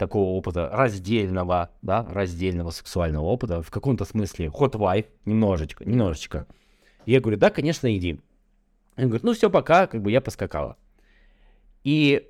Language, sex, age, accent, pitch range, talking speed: Russian, male, 20-39, native, 95-125 Hz, 140 wpm